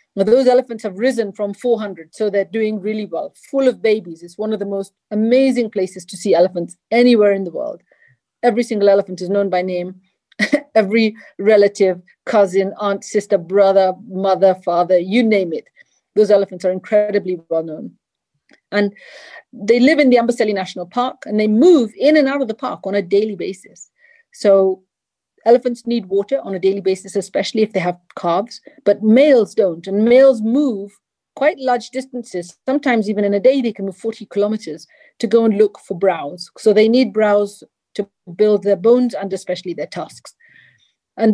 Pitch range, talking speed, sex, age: 195-235 Hz, 180 wpm, female, 40-59